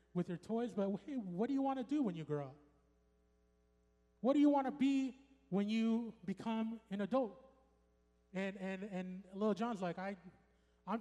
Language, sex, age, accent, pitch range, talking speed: English, male, 20-39, American, 175-240 Hz, 185 wpm